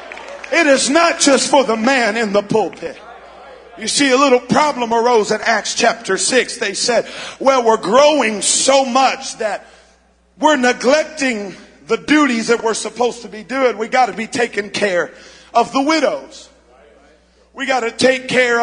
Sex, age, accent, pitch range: male, 50-69, American, 225-280 Hz